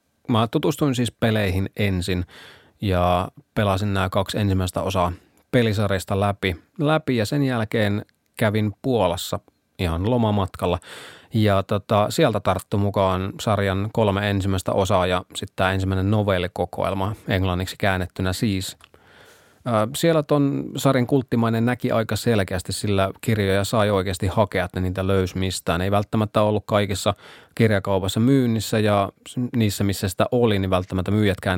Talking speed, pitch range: 135 wpm, 95-115 Hz